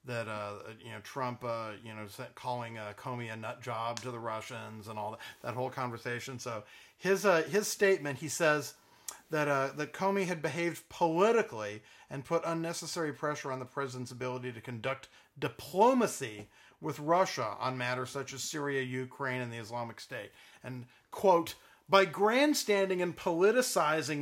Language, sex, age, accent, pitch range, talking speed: English, male, 40-59, American, 125-180 Hz, 165 wpm